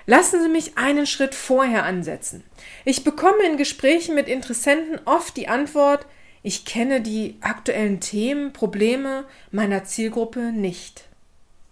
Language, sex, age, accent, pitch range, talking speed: German, female, 40-59, German, 225-310 Hz, 130 wpm